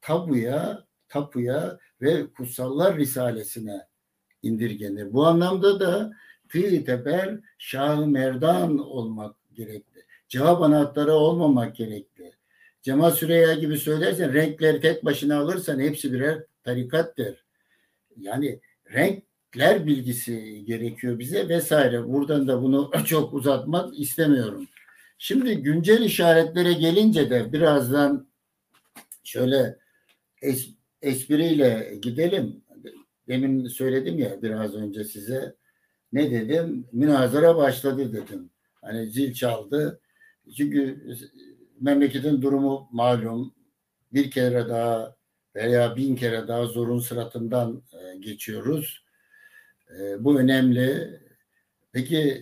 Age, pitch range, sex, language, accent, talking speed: 60-79, 120-155 Hz, male, Turkish, native, 95 wpm